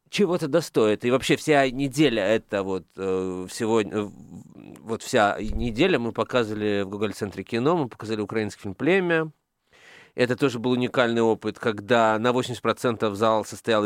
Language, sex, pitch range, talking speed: Russian, male, 105-130 Hz, 140 wpm